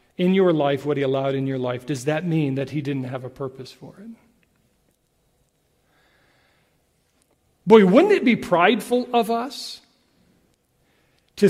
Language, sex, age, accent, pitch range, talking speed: English, male, 40-59, American, 140-195 Hz, 145 wpm